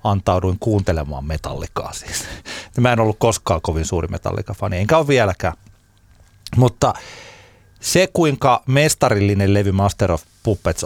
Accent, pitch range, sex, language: native, 95-115 Hz, male, Finnish